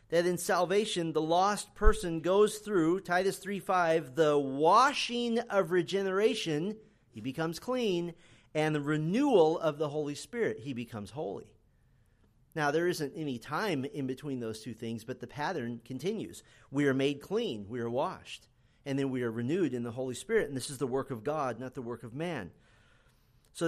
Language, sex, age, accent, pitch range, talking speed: English, male, 40-59, American, 135-195 Hz, 180 wpm